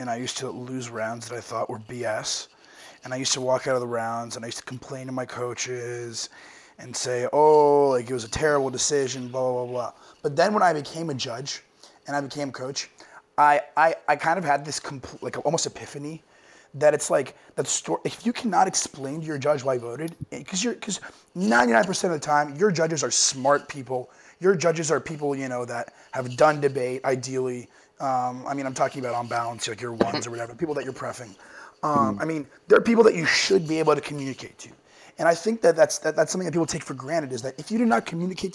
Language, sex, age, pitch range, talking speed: English, male, 30-49, 125-160 Hz, 235 wpm